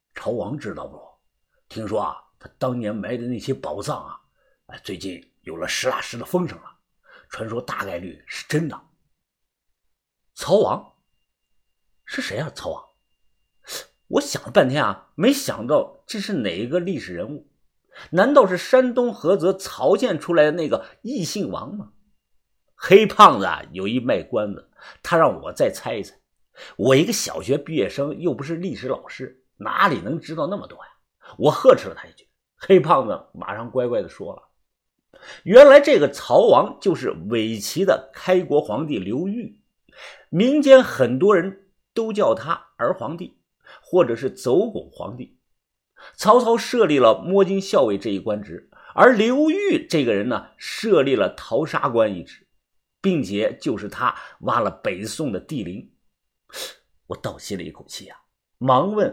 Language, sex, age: Chinese, male, 50-69